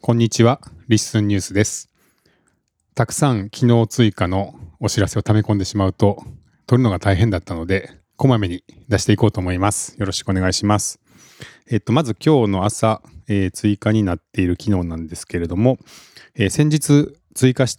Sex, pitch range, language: male, 95-125 Hz, Japanese